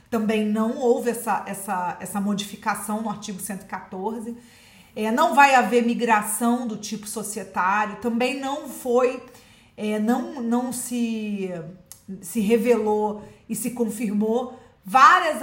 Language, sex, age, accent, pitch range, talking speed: Portuguese, female, 40-59, Brazilian, 215-255 Hz, 120 wpm